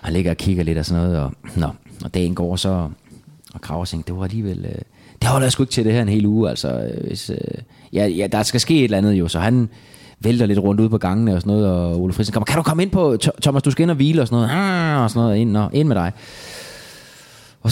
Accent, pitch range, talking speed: native, 110-150 Hz, 270 wpm